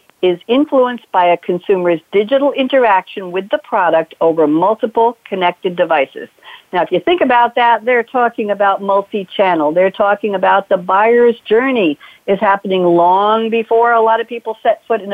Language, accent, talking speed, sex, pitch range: English, American, 165 wpm, female, 175-220 Hz